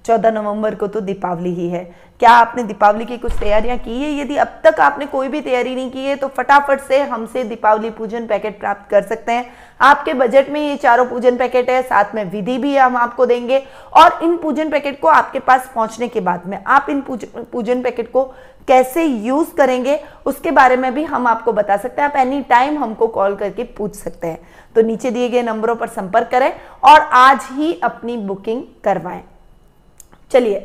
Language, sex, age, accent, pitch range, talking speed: Hindi, female, 20-39, native, 215-265 Hz, 205 wpm